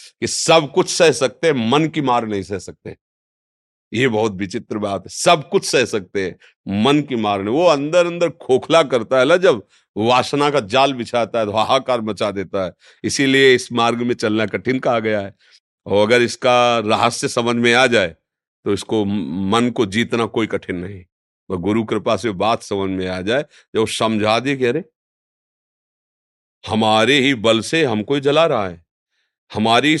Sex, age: male, 50-69